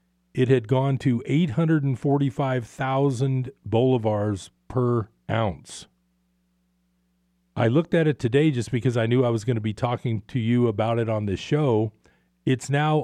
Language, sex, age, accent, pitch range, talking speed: English, male, 40-59, American, 105-135 Hz, 145 wpm